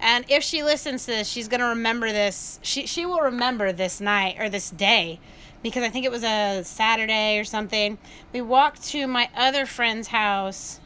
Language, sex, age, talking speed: English, female, 30-49, 195 wpm